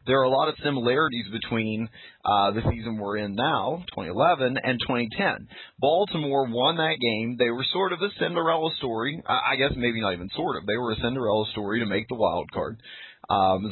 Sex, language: male, English